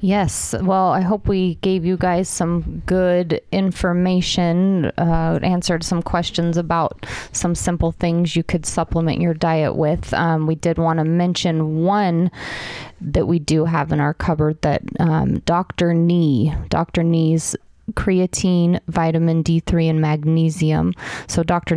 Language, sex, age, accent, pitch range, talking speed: English, female, 30-49, American, 155-175 Hz, 145 wpm